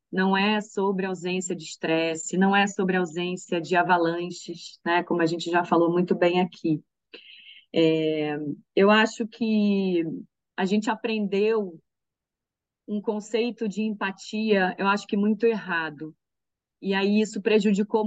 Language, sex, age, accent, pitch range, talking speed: Portuguese, female, 30-49, Brazilian, 180-220 Hz, 135 wpm